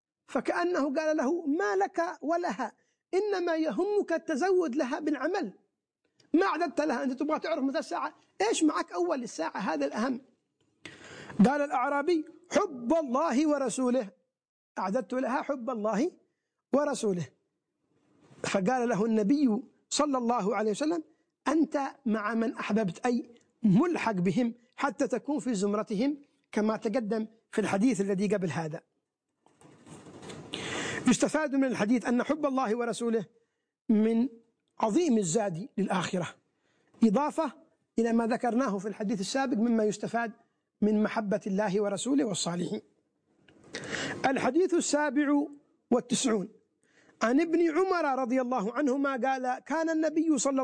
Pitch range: 225-310 Hz